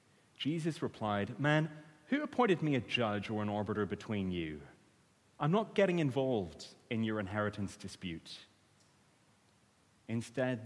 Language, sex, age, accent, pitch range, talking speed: English, male, 30-49, British, 100-140 Hz, 125 wpm